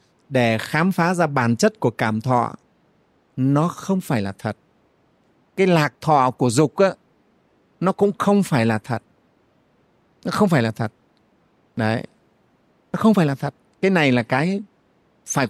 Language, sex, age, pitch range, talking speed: Vietnamese, male, 30-49, 125-165 Hz, 165 wpm